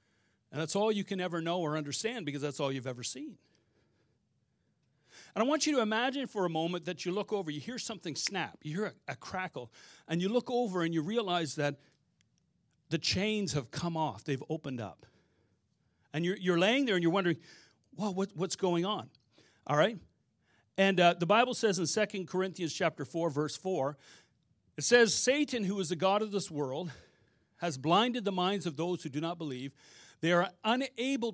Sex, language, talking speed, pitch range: male, English, 195 wpm, 160-210 Hz